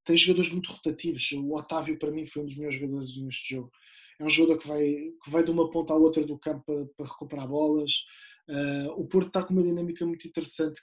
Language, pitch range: Portuguese, 145-165 Hz